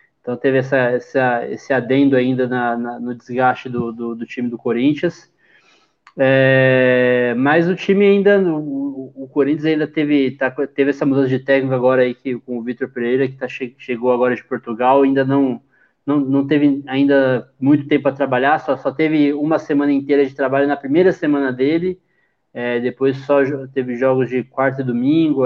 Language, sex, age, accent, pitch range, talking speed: Portuguese, male, 20-39, Brazilian, 130-145 Hz, 180 wpm